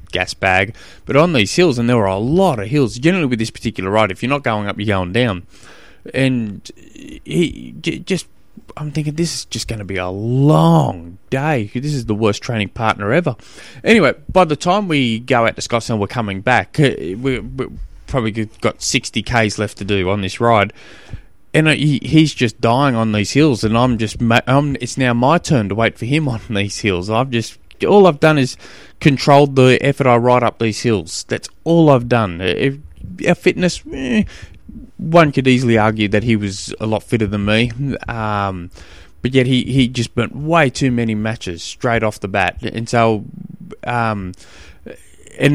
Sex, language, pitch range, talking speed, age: male, English, 105-135 Hz, 190 wpm, 20-39